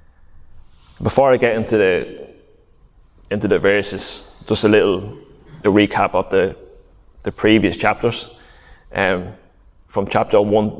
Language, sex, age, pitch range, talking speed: English, male, 20-39, 95-110 Hz, 120 wpm